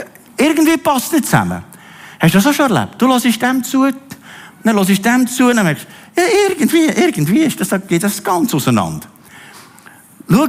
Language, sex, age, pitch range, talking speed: German, male, 50-69, 130-210 Hz, 175 wpm